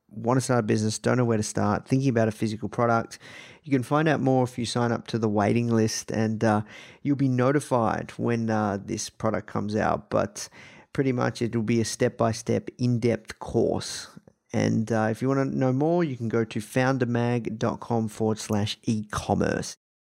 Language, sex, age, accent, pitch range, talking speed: English, male, 30-49, Australian, 110-130 Hz, 195 wpm